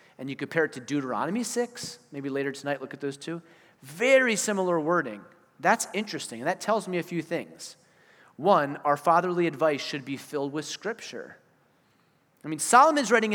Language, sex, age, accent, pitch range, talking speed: English, male, 30-49, American, 140-180 Hz, 175 wpm